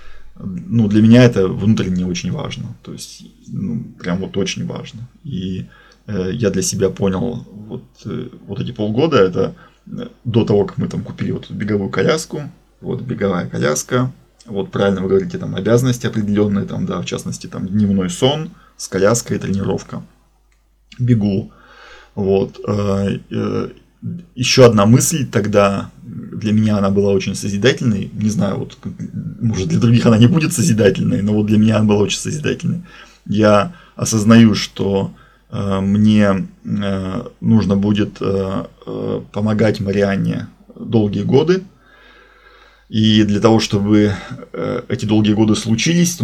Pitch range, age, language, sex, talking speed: 100-120 Hz, 20-39, Russian, male, 145 wpm